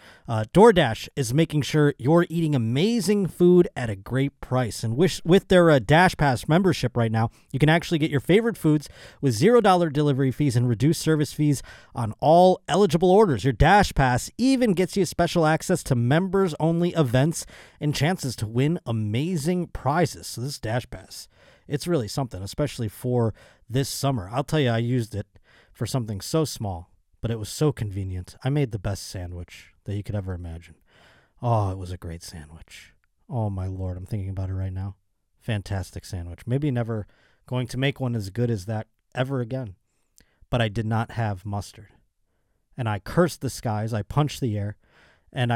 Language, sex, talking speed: English, male, 185 wpm